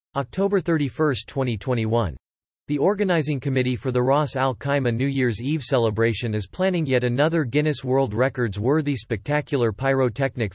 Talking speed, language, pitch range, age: 135 wpm, English, 115-150 Hz, 40-59